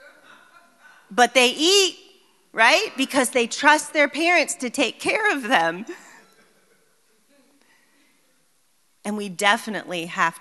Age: 30-49